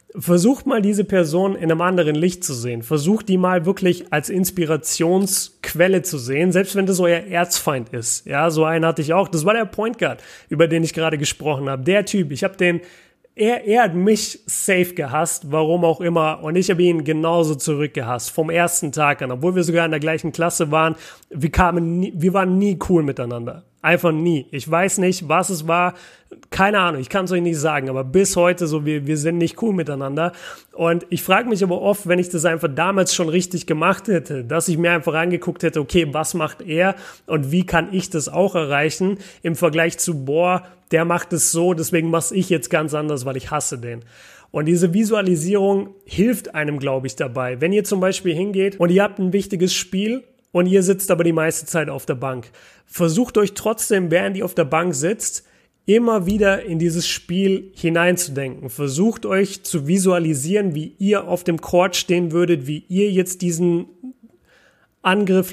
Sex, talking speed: male, 200 wpm